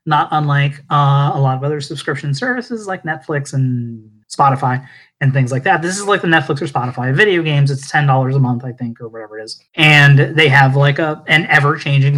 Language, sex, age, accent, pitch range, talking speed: English, male, 30-49, American, 130-150 Hz, 210 wpm